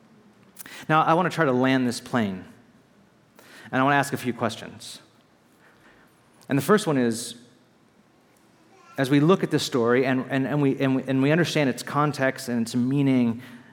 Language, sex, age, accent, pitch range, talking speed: English, male, 40-59, American, 120-140 Hz, 185 wpm